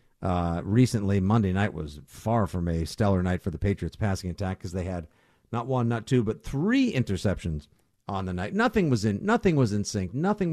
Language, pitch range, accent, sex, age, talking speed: English, 100-140 Hz, American, male, 50-69, 205 wpm